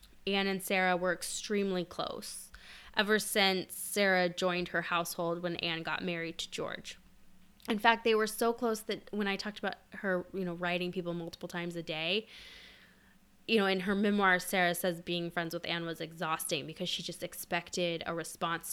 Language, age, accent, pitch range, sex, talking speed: English, 10-29, American, 175-210 Hz, female, 185 wpm